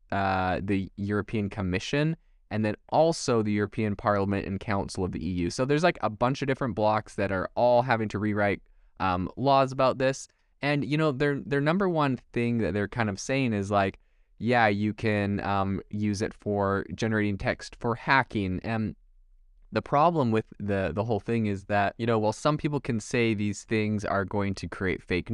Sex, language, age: male, English, 20-39